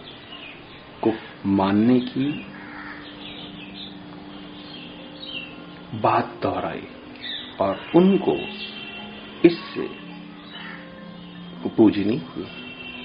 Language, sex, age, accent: Hindi, male, 50-69, native